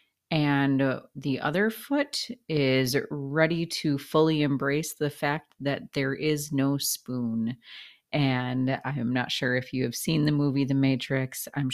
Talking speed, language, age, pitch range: 155 wpm, English, 30-49, 125-150 Hz